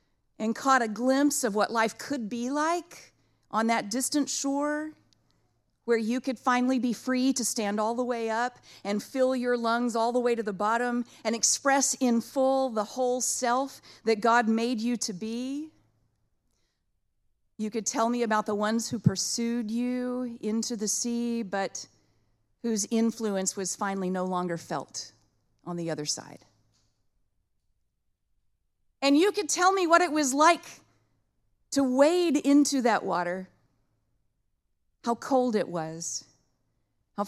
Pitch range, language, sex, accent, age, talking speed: 175-245 Hz, English, female, American, 40-59, 150 wpm